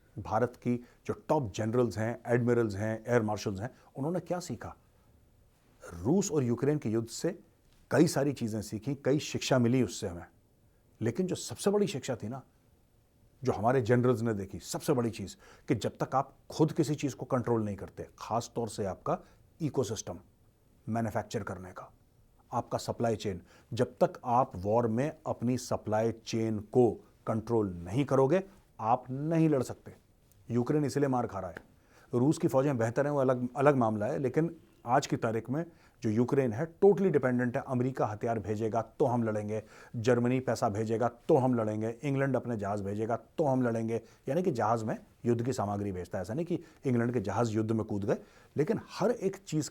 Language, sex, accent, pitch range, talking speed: Hindi, male, native, 110-135 Hz, 180 wpm